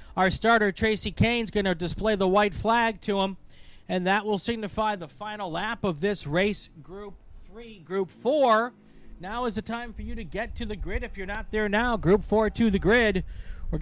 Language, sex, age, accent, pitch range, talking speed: English, male, 40-59, American, 180-230 Hz, 205 wpm